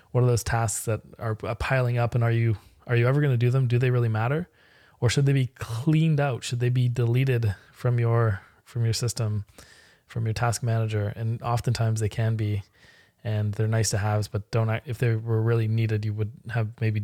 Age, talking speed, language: 20-39, 220 wpm, English